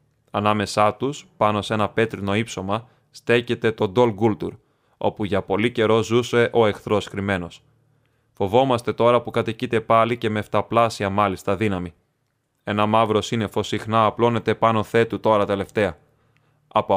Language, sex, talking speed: Greek, male, 140 wpm